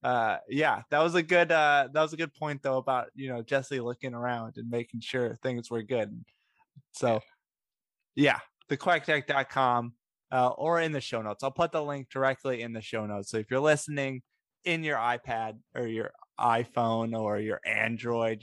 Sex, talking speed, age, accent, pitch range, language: male, 180 wpm, 20-39, American, 110-140 Hz, English